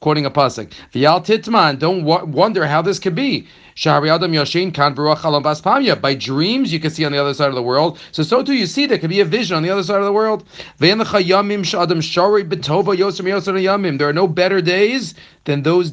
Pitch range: 135-185 Hz